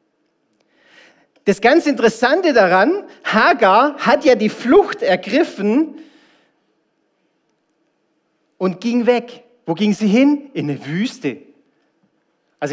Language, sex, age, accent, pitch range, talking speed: German, male, 40-59, German, 155-235 Hz, 100 wpm